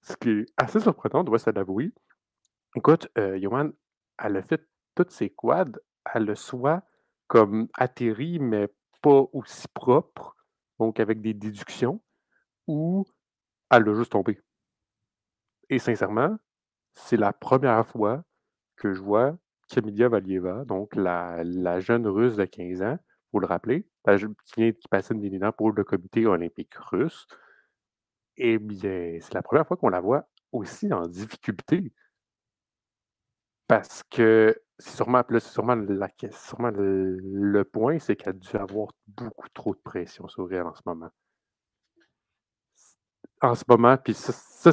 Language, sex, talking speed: French, male, 150 wpm